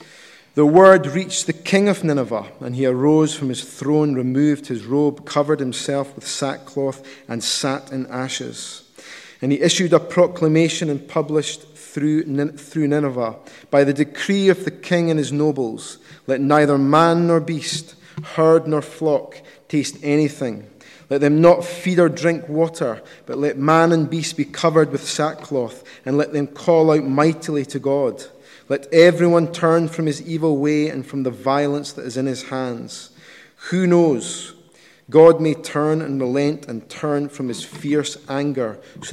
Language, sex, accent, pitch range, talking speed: English, male, British, 135-160 Hz, 165 wpm